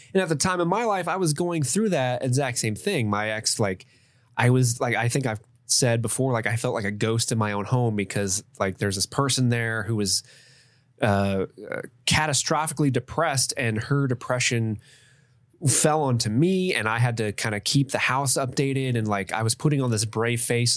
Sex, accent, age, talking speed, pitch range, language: male, American, 20-39, 210 wpm, 110-130 Hz, English